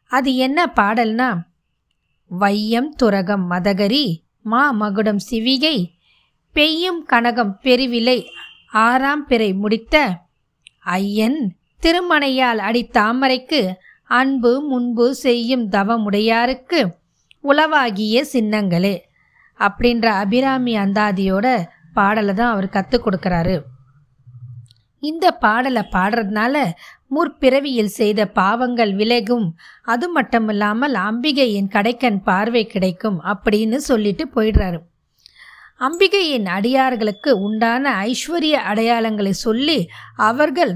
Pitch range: 205-260 Hz